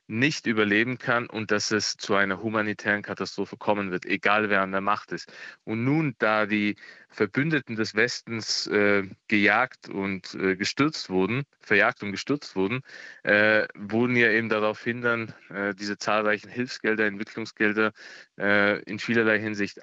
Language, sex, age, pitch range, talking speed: German, male, 20-39, 100-115 Hz, 150 wpm